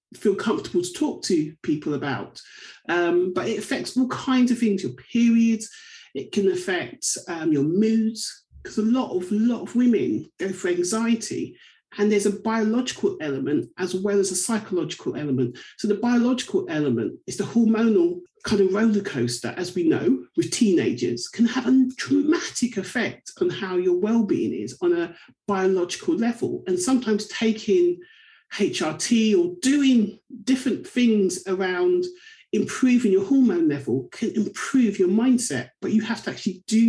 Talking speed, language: 160 wpm, English